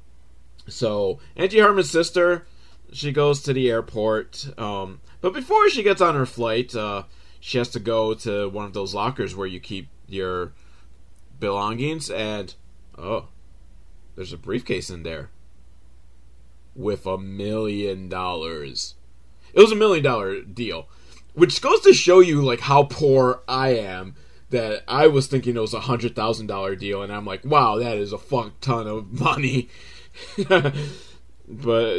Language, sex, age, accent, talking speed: English, male, 30-49, American, 155 wpm